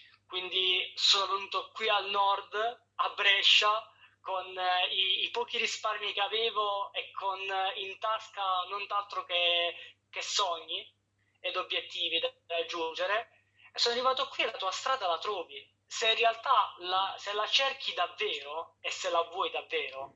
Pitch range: 170-220 Hz